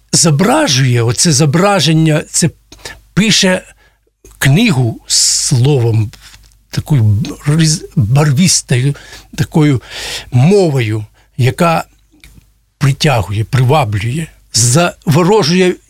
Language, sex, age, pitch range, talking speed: Russian, male, 60-79, 135-180 Hz, 60 wpm